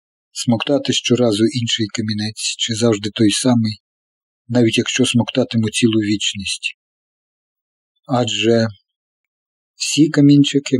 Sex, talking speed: male, 90 wpm